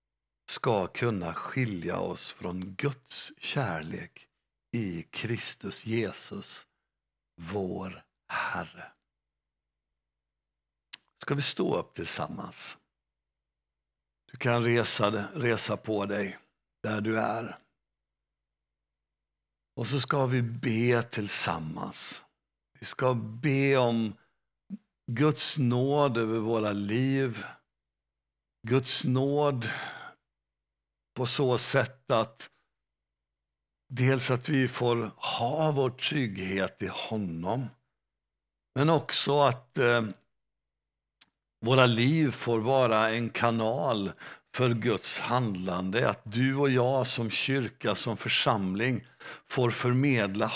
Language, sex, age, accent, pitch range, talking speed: Swedish, male, 60-79, native, 95-130 Hz, 95 wpm